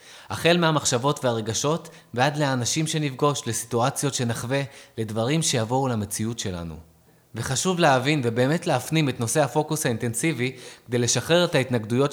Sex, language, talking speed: male, Hebrew, 120 wpm